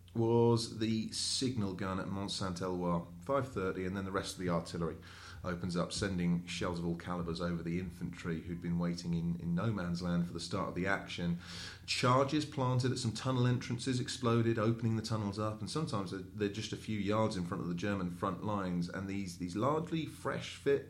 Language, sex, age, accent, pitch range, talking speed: English, male, 30-49, British, 90-115 Hz, 200 wpm